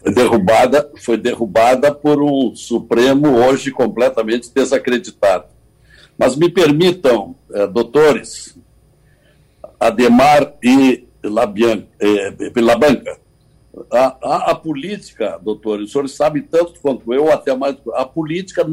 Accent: Brazilian